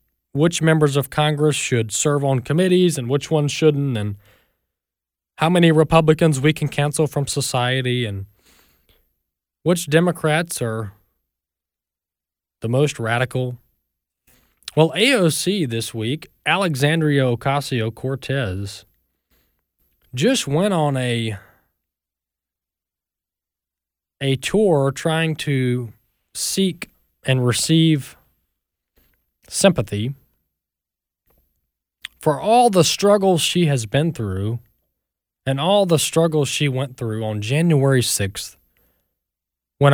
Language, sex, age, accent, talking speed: English, male, 20-39, American, 100 wpm